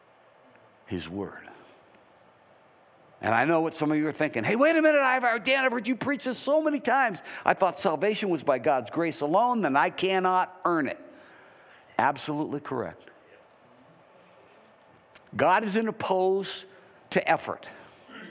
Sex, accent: male, American